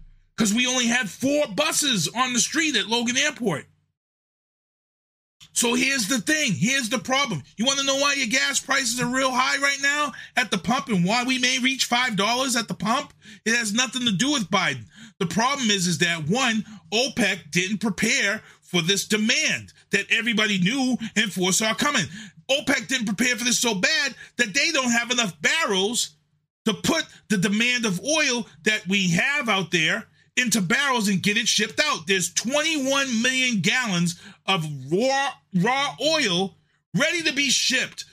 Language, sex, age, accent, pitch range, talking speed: English, male, 30-49, American, 200-265 Hz, 175 wpm